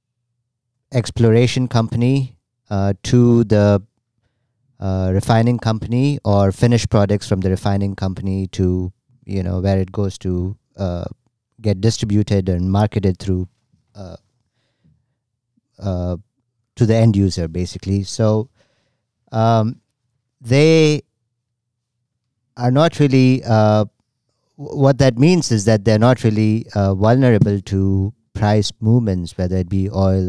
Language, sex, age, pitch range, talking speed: English, male, 50-69, 95-120 Hz, 120 wpm